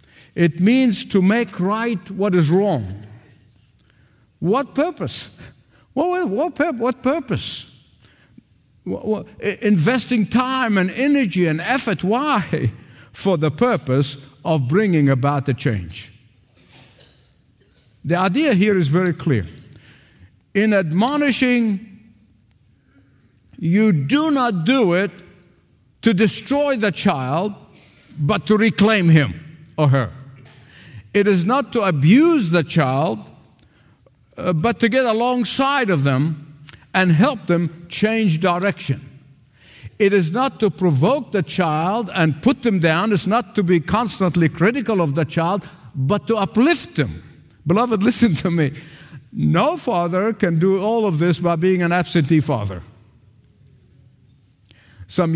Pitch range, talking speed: 140-215 Hz, 120 wpm